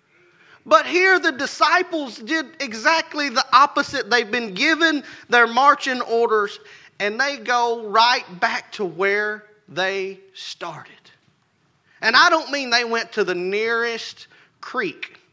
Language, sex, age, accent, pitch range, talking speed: English, male, 30-49, American, 180-270 Hz, 130 wpm